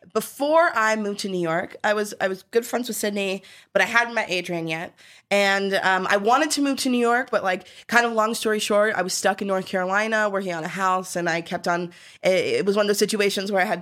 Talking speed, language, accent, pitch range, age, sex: 255 wpm, English, American, 175-215 Hz, 20-39, female